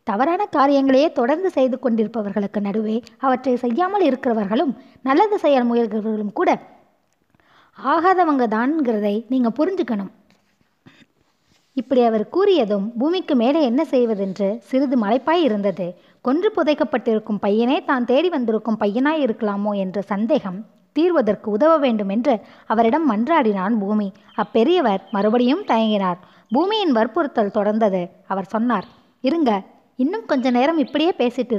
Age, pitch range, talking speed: 20-39, 210-290 Hz, 110 wpm